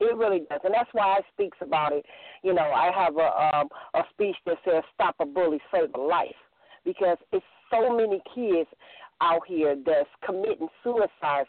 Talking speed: 190 wpm